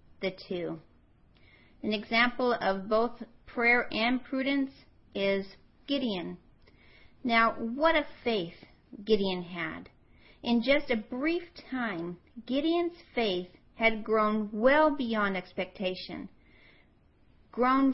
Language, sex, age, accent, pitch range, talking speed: English, female, 40-59, American, 190-255 Hz, 100 wpm